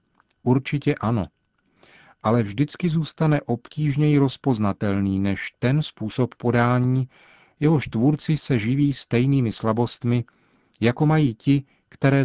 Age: 40-59